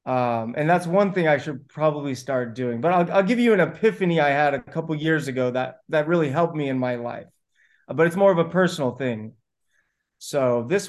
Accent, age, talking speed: American, 30-49, 220 wpm